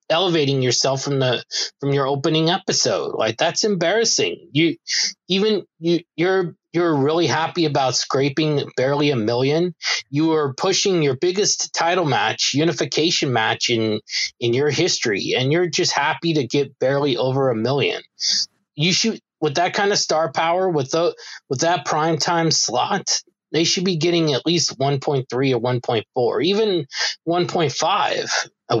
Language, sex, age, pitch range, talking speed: English, male, 20-39, 135-175 Hz, 165 wpm